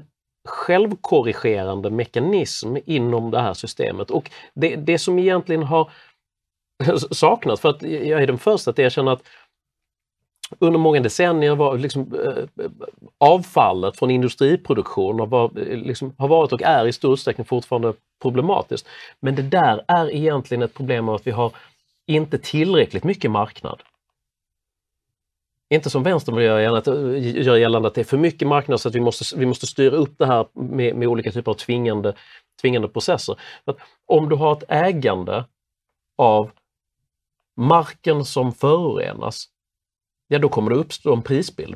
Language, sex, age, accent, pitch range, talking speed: Swedish, male, 40-59, native, 115-155 Hz, 150 wpm